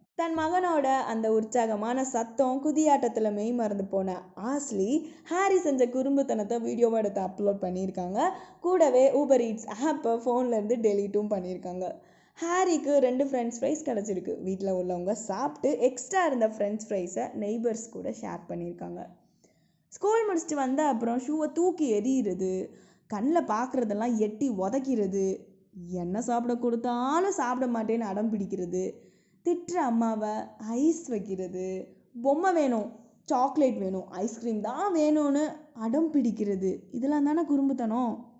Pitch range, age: 205-280 Hz, 20-39